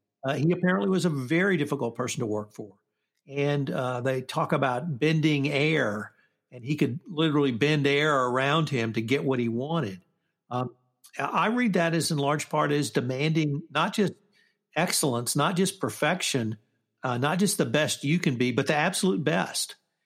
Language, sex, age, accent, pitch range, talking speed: English, male, 60-79, American, 130-155 Hz, 175 wpm